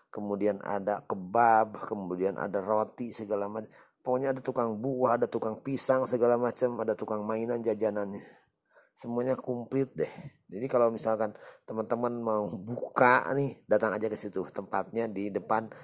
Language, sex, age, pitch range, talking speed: Indonesian, male, 30-49, 95-120 Hz, 145 wpm